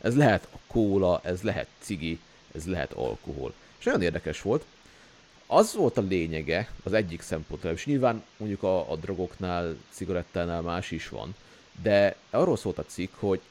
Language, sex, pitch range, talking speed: Hungarian, male, 90-135 Hz, 165 wpm